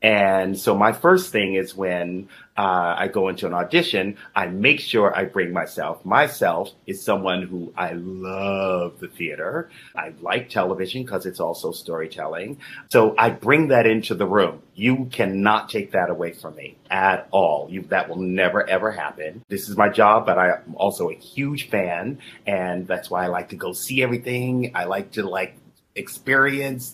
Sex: male